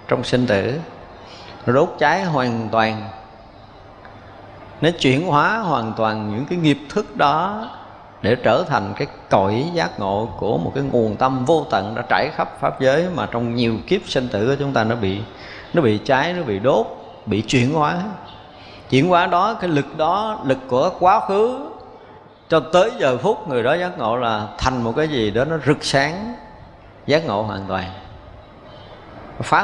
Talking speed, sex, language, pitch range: 180 wpm, male, Vietnamese, 105-145 Hz